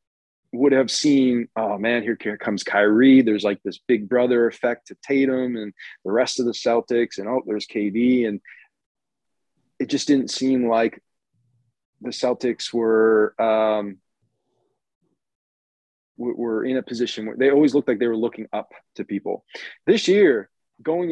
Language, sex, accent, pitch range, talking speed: English, male, American, 110-135 Hz, 155 wpm